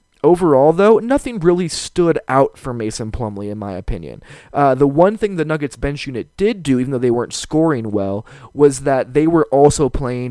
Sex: male